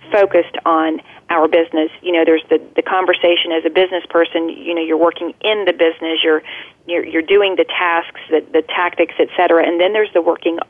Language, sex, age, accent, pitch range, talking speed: English, female, 40-59, American, 165-185 Hz, 200 wpm